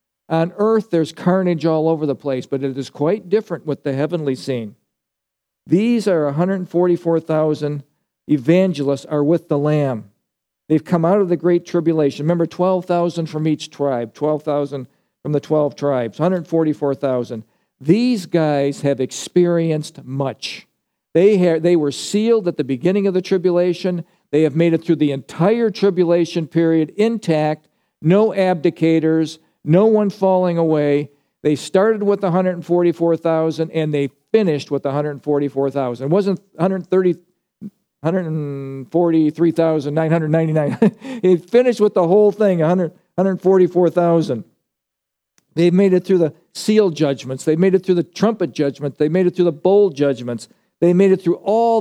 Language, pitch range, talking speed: English, 145-185 Hz, 140 wpm